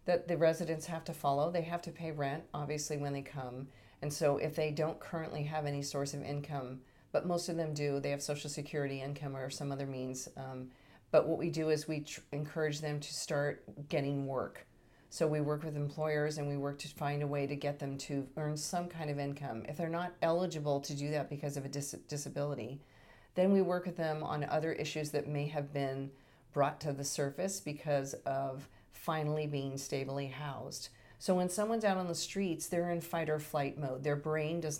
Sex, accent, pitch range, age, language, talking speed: female, American, 140-160 Hz, 40-59, English, 210 wpm